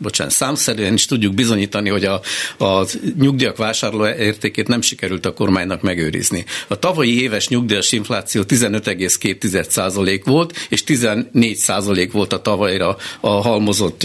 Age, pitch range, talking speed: 60-79, 100-120 Hz, 130 wpm